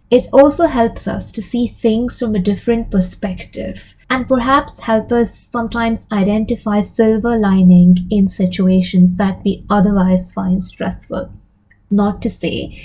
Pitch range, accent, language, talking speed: 185-235 Hz, Indian, English, 135 wpm